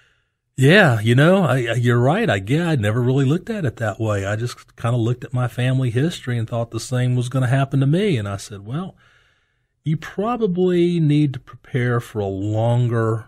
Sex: male